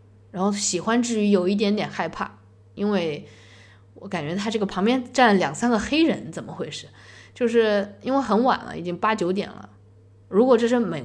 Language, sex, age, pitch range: Chinese, female, 20-39, 135-205 Hz